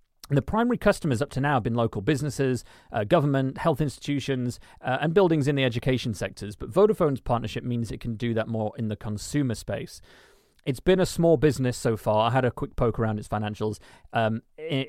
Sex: male